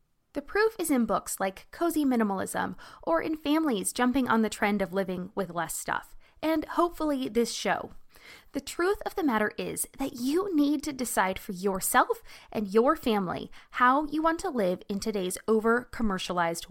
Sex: female